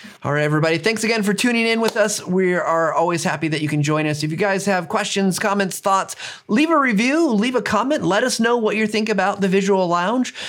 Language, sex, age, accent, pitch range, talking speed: English, male, 30-49, American, 160-215 Hz, 240 wpm